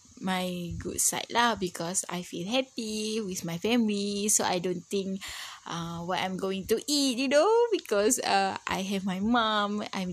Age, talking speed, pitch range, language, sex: 20-39, 180 wpm, 175-240 Hz, English, female